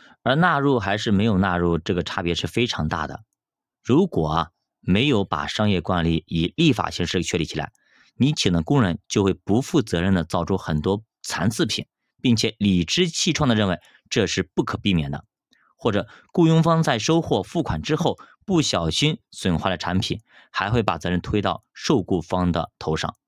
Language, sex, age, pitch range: Chinese, male, 30-49, 90-120 Hz